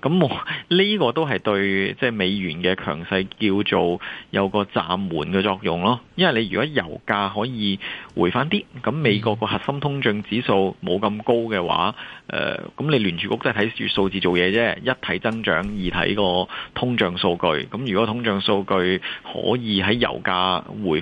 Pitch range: 95-115 Hz